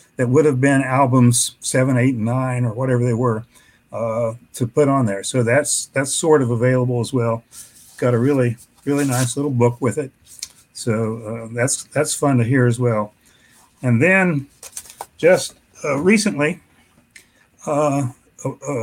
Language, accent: English, American